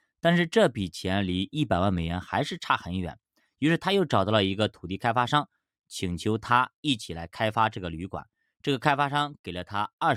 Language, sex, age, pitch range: Chinese, male, 20-39, 95-135 Hz